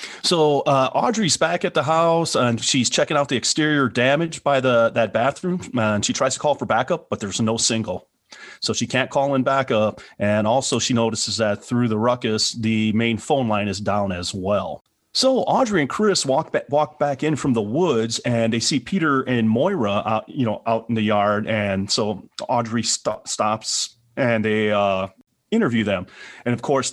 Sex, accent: male, American